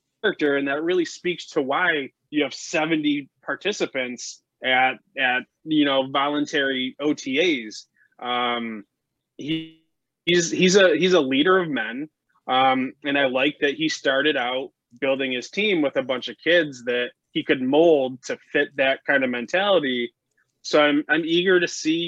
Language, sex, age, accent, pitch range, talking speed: English, male, 20-39, American, 125-155 Hz, 155 wpm